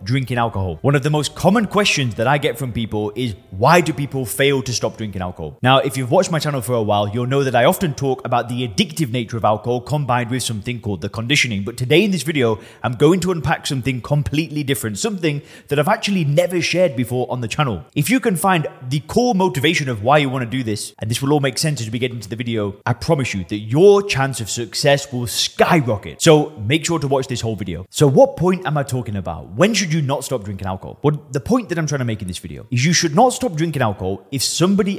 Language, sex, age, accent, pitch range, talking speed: English, male, 20-39, British, 115-155 Hz, 255 wpm